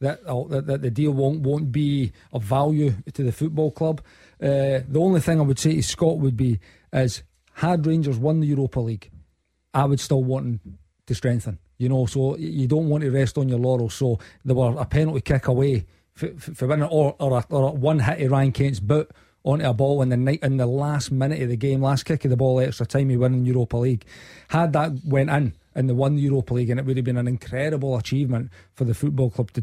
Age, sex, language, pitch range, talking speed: 40-59, male, English, 125-145 Hz, 235 wpm